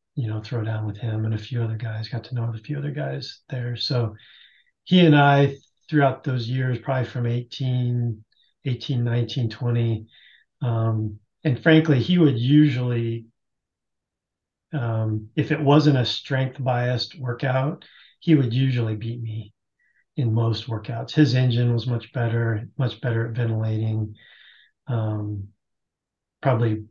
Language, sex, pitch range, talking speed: English, male, 110-130 Hz, 145 wpm